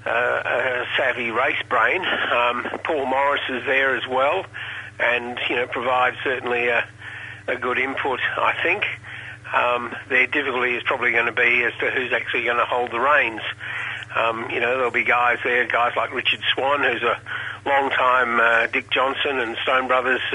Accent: Australian